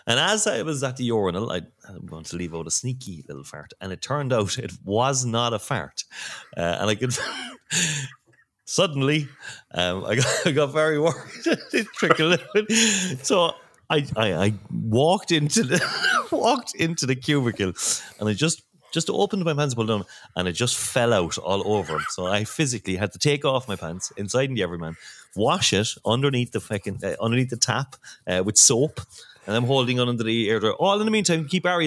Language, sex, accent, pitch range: English, male, Irish, 95-145 Hz